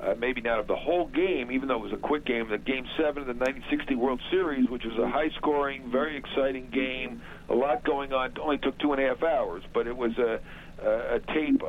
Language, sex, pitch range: English, male, 120-155 Hz